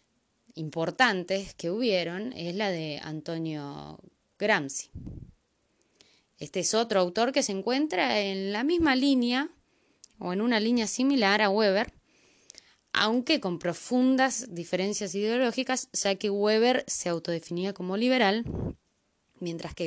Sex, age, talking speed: female, 20-39, 120 wpm